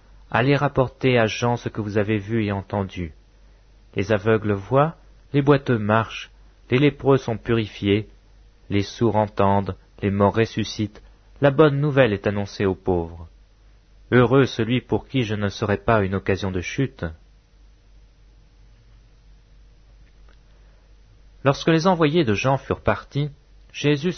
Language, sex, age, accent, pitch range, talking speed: English, male, 30-49, French, 100-135 Hz, 135 wpm